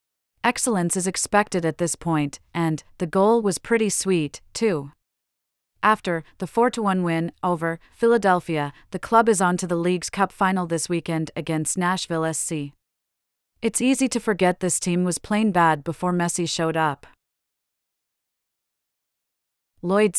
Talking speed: 140 wpm